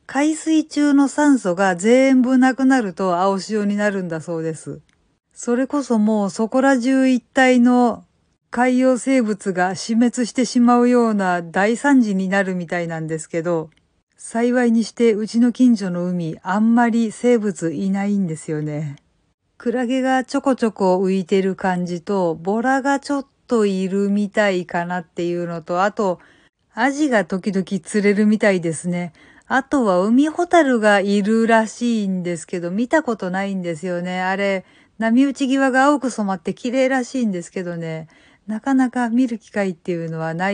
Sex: female